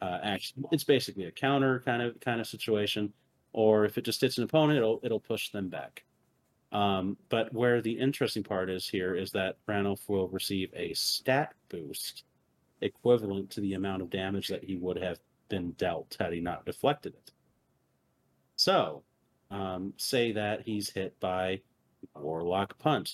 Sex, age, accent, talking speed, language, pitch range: male, 30-49, American, 170 wpm, English, 95-115 Hz